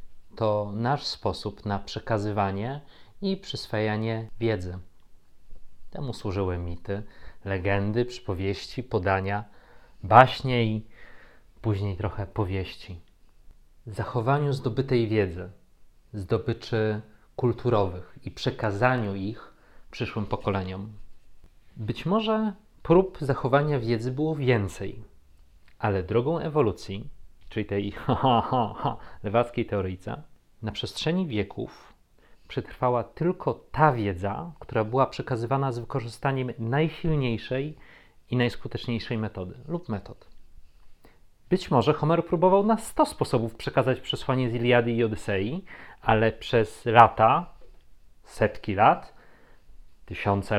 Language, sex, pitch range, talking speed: Polish, male, 100-135 Hz, 100 wpm